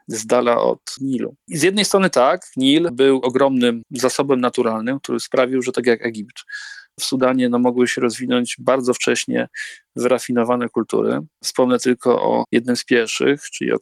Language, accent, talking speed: Polish, native, 165 wpm